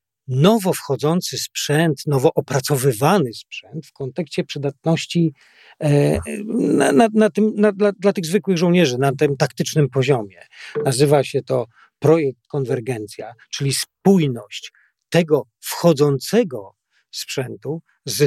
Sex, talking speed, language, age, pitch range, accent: male, 95 wpm, Polish, 40-59, 135-175 Hz, native